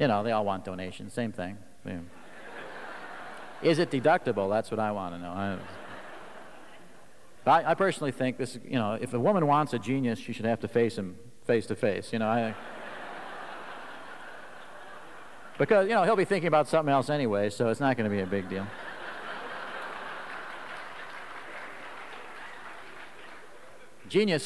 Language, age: English, 50-69